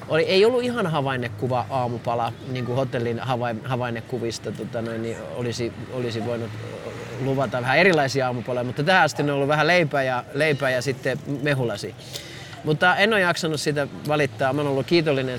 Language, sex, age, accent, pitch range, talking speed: Finnish, male, 30-49, native, 125-160 Hz, 160 wpm